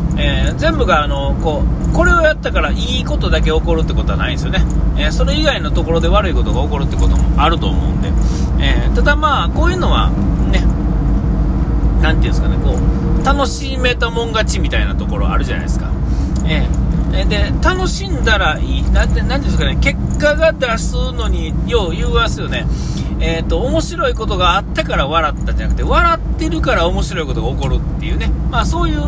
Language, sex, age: Japanese, male, 40-59